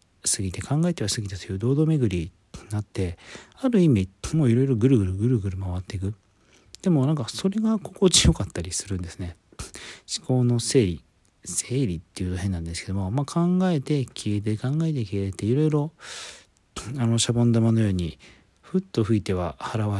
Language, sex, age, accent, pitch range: Japanese, male, 40-59, native, 95-140 Hz